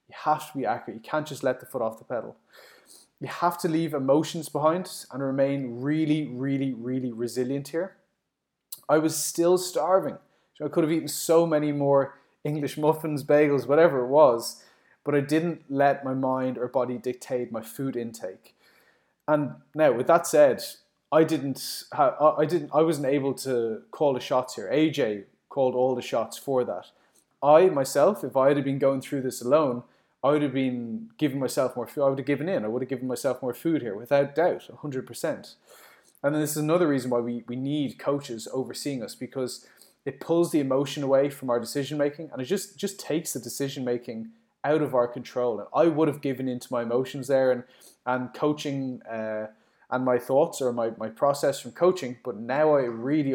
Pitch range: 125-150 Hz